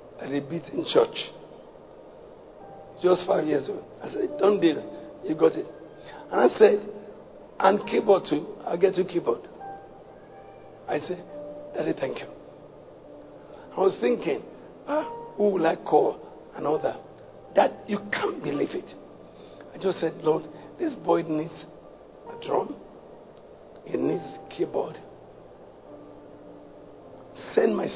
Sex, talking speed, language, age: male, 120 wpm, English, 60-79